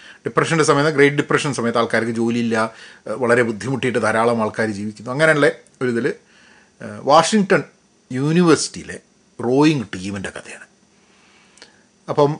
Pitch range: 135-190 Hz